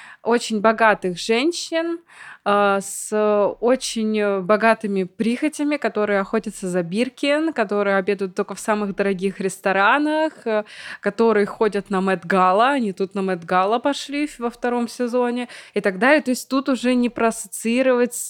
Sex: female